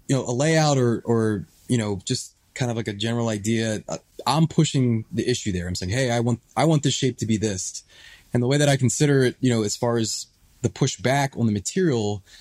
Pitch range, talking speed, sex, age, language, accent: 105-130 Hz, 240 wpm, male, 20-39, English, American